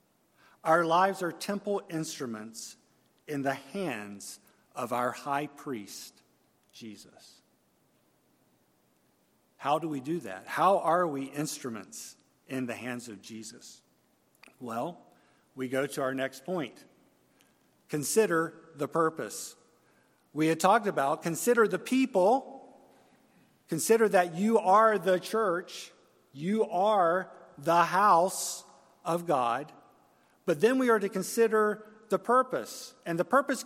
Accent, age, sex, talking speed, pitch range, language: American, 50-69, male, 120 wpm, 145-215 Hz, English